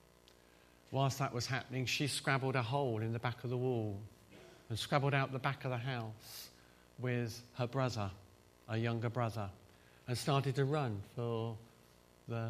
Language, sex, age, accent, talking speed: English, male, 50-69, British, 165 wpm